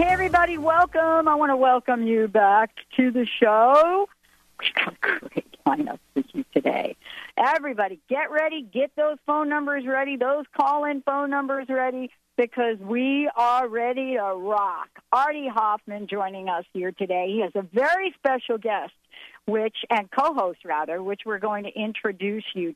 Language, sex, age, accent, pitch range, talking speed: English, female, 50-69, American, 190-265 Hz, 160 wpm